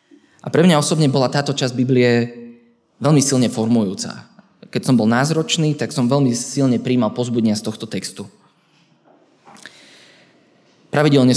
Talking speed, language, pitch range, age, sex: 130 wpm, Slovak, 115-135 Hz, 20-39, male